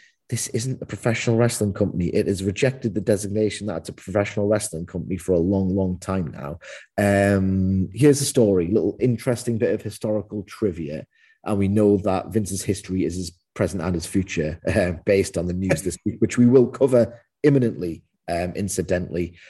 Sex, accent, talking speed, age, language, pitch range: male, British, 185 wpm, 30-49, English, 90-110 Hz